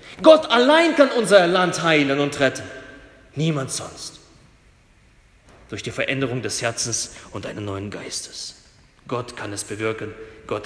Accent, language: German, German